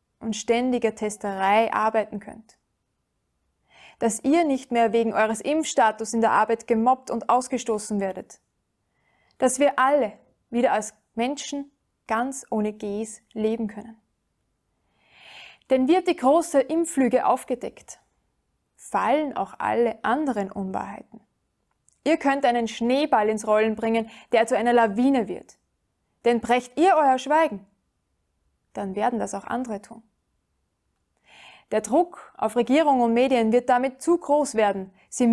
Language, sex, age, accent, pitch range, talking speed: German, female, 20-39, German, 215-260 Hz, 130 wpm